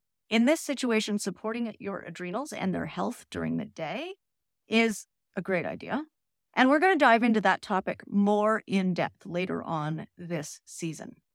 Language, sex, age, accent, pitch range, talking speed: English, female, 40-59, American, 190-250 Hz, 165 wpm